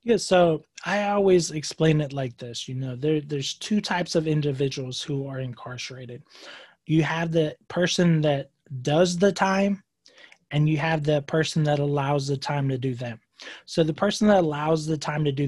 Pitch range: 140-165 Hz